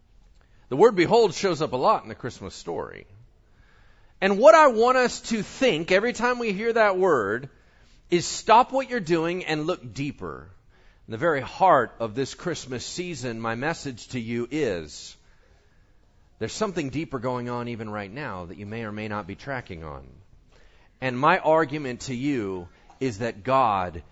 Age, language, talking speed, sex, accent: 40-59, English, 175 wpm, male, American